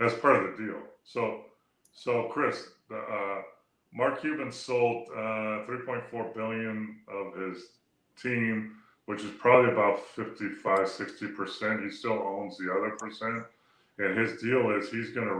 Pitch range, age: 95-115 Hz, 30-49